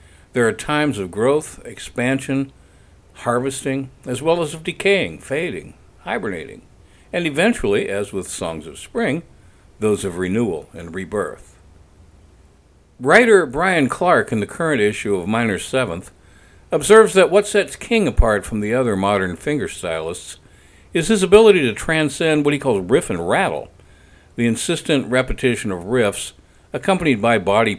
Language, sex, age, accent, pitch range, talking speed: English, male, 60-79, American, 85-140 Hz, 145 wpm